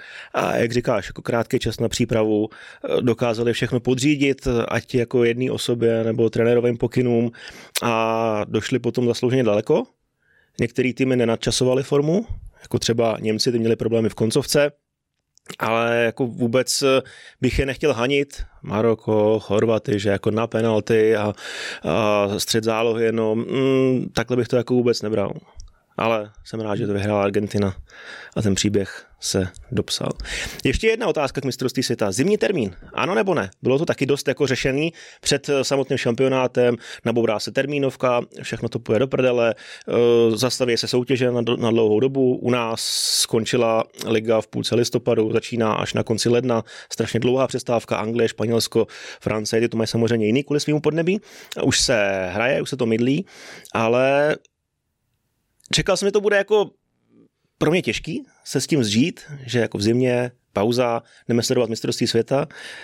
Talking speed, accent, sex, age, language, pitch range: 155 wpm, native, male, 20-39, Czech, 110-130 Hz